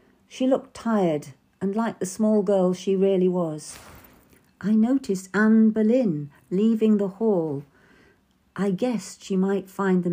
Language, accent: English, British